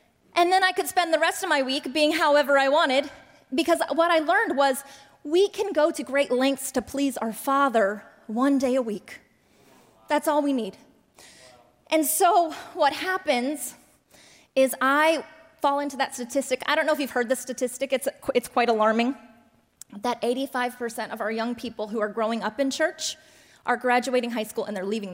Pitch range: 245-310 Hz